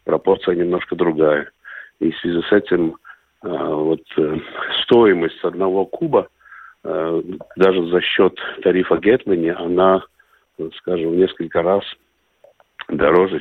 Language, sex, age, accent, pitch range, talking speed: Russian, male, 50-69, native, 85-110 Hz, 100 wpm